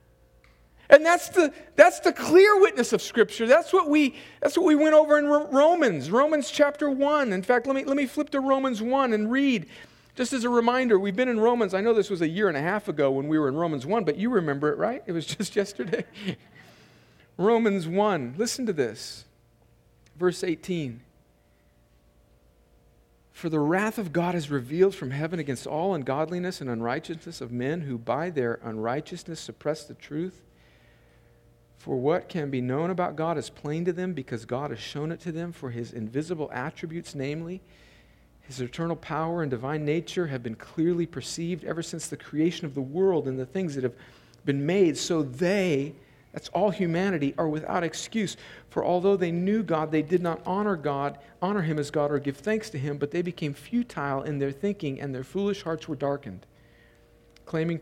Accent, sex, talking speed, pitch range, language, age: American, male, 190 wpm, 140-205 Hz, English, 40-59